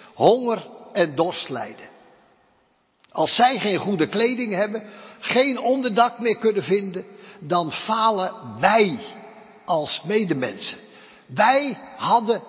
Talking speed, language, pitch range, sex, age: 105 wpm, Dutch, 195-250 Hz, male, 60-79